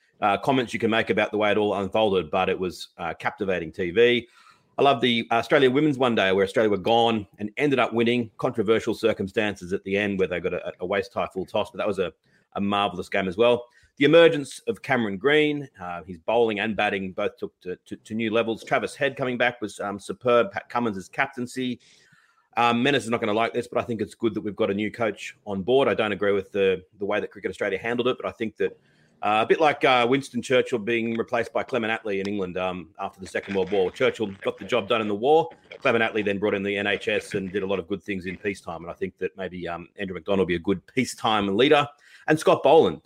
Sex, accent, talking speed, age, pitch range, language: male, Australian, 250 wpm, 30-49, 100-125 Hz, English